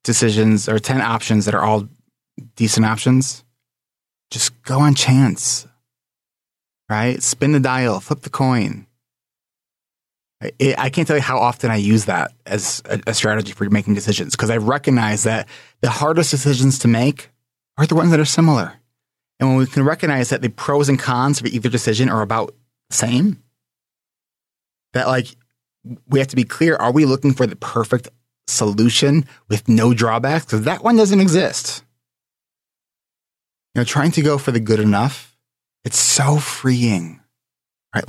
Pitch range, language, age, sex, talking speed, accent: 115-140 Hz, English, 30-49, male, 165 wpm, American